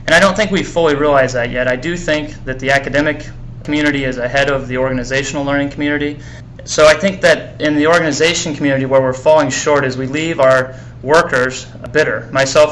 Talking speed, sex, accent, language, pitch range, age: 200 wpm, male, American, English, 125-145 Hz, 30-49